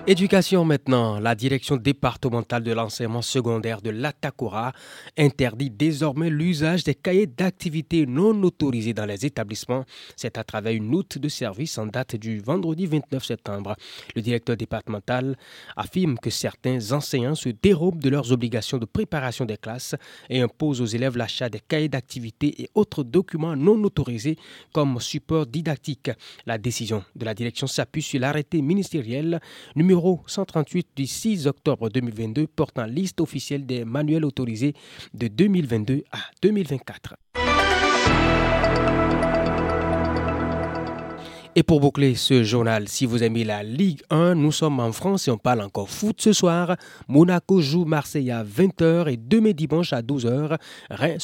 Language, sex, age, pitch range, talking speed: French, male, 30-49, 115-160 Hz, 145 wpm